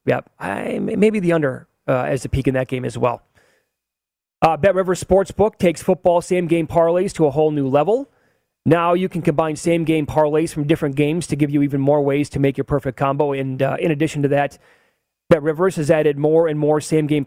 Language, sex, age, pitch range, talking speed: English, male, 30-49, 140-170 Hz, 220 wpm